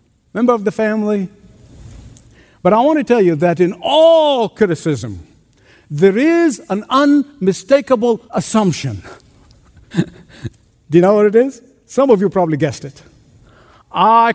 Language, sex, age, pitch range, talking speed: English, male, 60-79, 145-215 Hz, 135 wpm